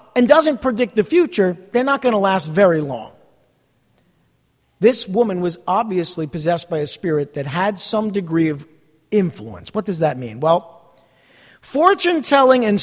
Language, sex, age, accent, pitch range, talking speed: English, male, 50-69, American, 165-230 Hz, 155 wpm